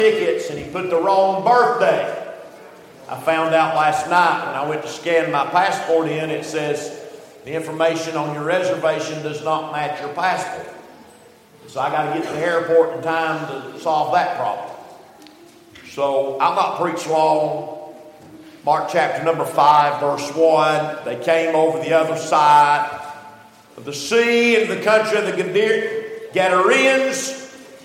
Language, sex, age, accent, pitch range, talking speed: English, male, 50-69, American, 165-225 Hz, 155 wpm